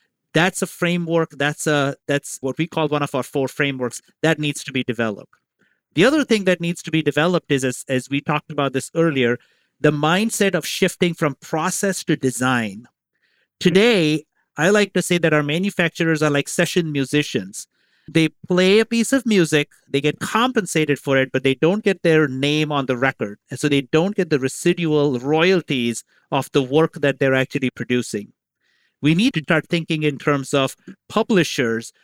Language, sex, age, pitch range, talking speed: English, male, 50-69, 140-175 Hz, 185 wpm